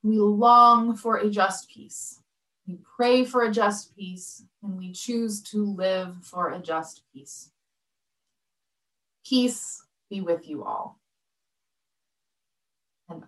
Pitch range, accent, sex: 185-235 Hz, American, female